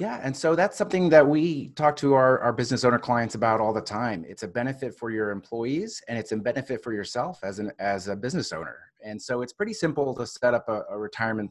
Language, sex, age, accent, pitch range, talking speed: English, male, 30-49, American, 105-125 Hz, 245 wpm